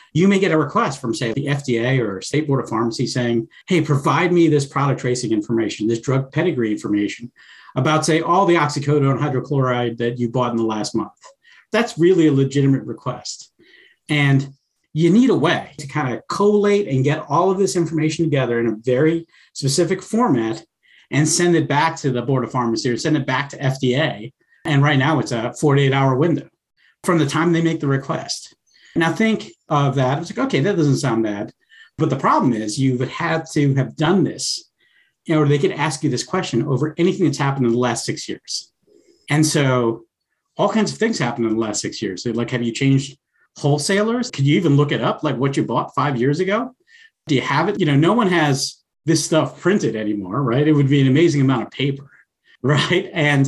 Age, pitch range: 50-69, 125-170 Hz